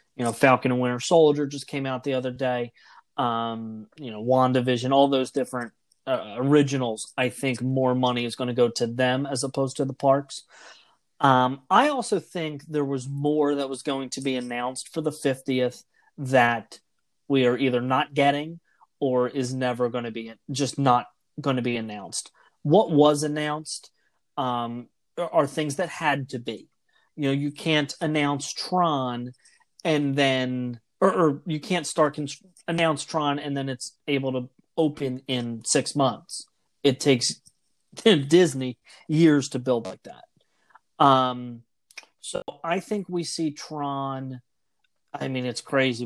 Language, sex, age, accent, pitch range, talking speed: English, male, 30-49, American, 125-150 Hz, 160 wpm